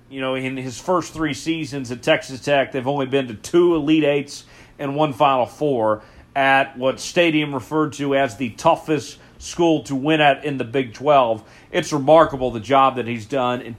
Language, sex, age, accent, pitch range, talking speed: English, male, 40-59, American, 130-160 Hz, 195 wpm